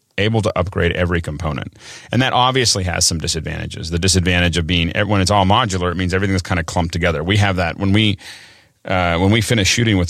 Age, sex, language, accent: 30-49, male, English, American